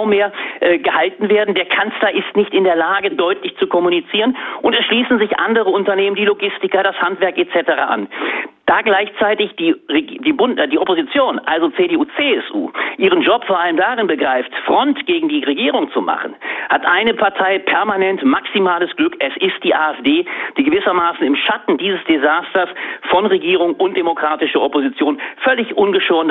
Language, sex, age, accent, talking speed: German, male, 40-59, German, 160 wpm